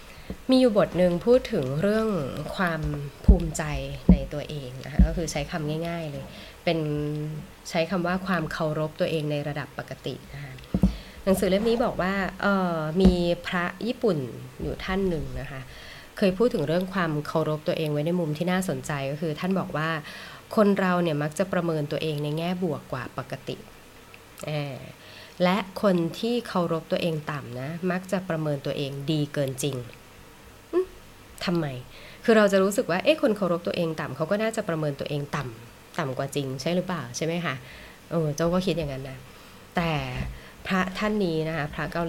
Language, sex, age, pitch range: Thai, female, 20-39, 150-185 Hz